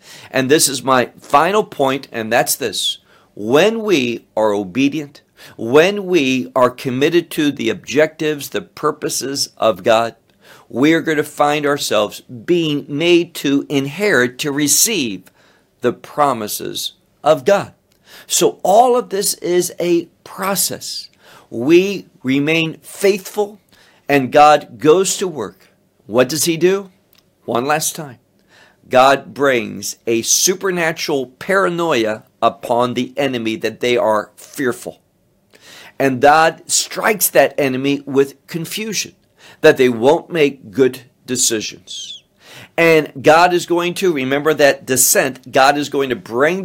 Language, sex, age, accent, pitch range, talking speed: English, male, 60-79, American, 125-170 Hz, 130 wpm